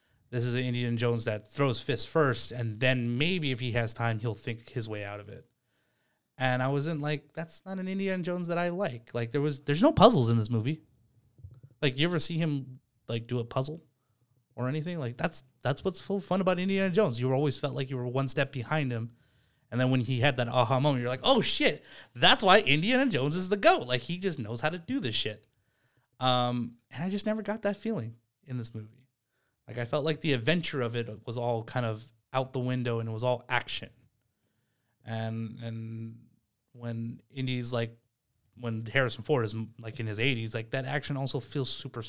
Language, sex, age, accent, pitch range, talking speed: English, male, 30-49, American, 115-140 Hz, 215 wpm